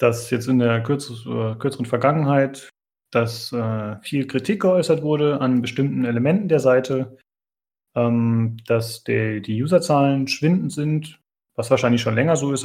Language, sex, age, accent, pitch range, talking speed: German, male, 30-49, German, 120-135 Hz, 140 wpm